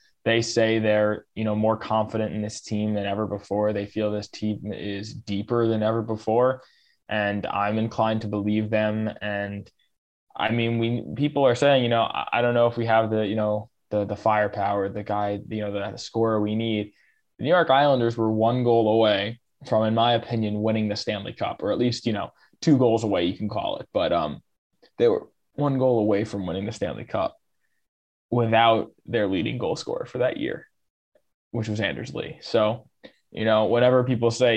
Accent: American